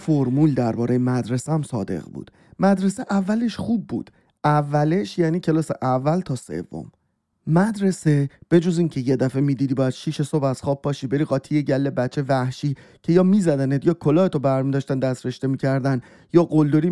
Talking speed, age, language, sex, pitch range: 155 wpm, 30-49, Persian, male, 140-170 Hz